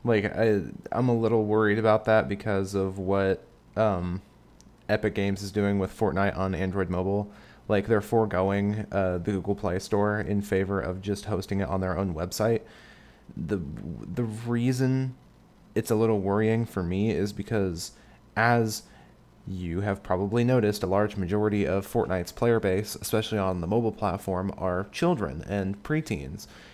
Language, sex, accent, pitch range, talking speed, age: English, male, American, 95-110 Hz, 160 wpm, 20-39